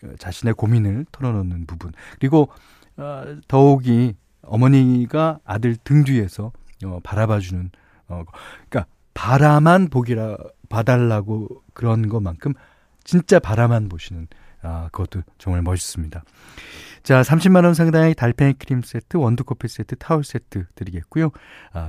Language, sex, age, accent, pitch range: Korean, male, 40-59, native, 95-150 Hz